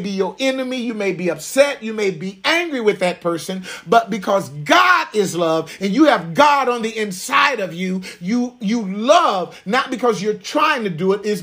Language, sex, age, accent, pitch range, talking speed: English, male, 40-59, American, 195-245 Hz, 205 wpm